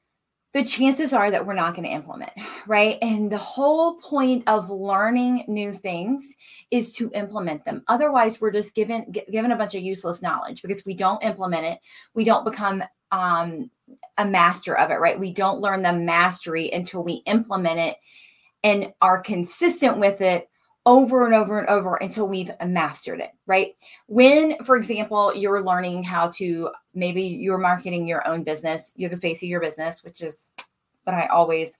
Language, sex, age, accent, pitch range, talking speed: English, female, 30-49, American, 180-230 Hz, 175 wpm